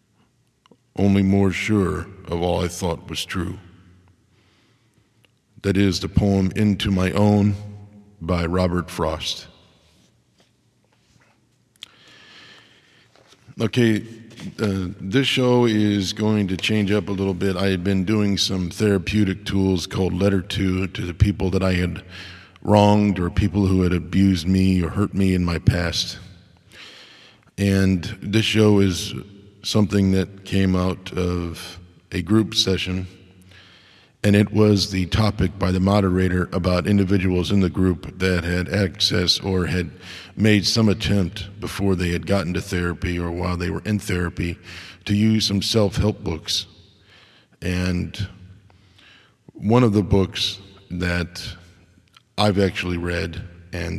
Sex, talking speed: male, 135 wpm